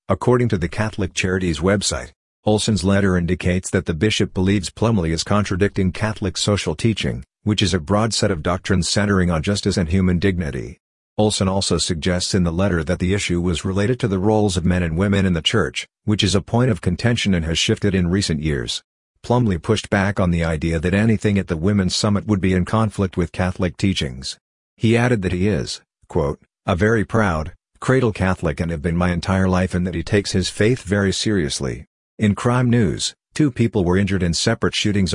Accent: American